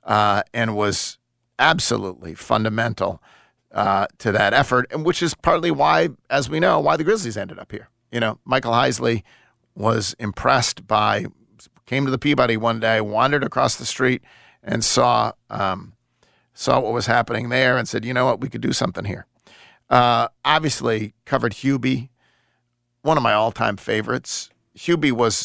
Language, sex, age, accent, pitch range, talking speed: English, male, 40-59, American, 110-130 Hz, 165 wpm